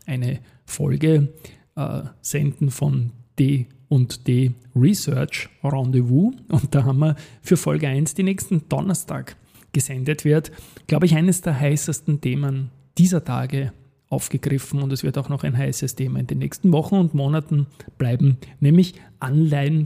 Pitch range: 135-155 Hz